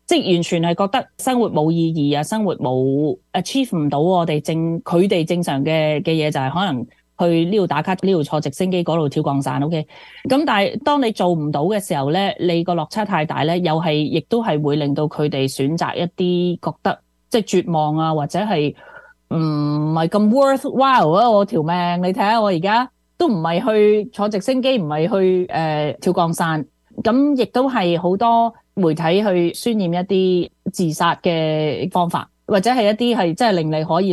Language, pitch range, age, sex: Chinese, 155-200 Hz, 30-49, female